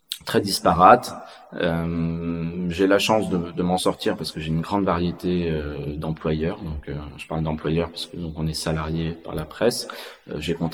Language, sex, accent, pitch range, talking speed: French, male, French, 80-90 Hz, 190 wpm